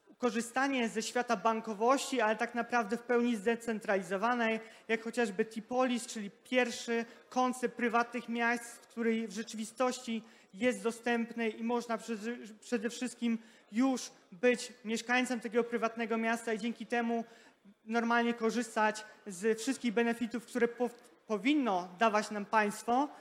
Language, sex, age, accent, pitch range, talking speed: Polish, male, 20-39, native, 220-245 Hz, 125 wpm